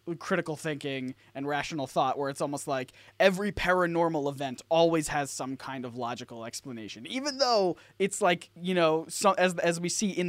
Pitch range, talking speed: 130-175 Hz, 180 wpm